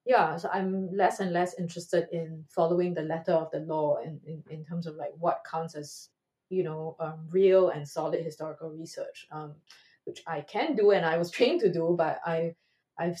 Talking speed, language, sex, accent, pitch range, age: 205 wpm, English, female, Malaysian, 155-180 Hz, 20-39